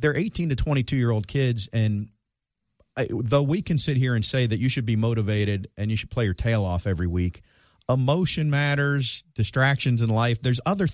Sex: male